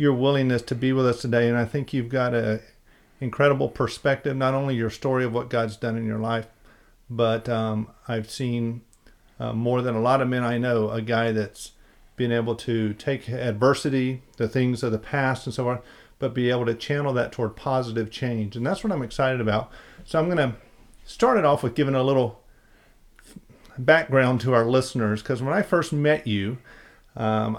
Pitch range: 115-130 Hz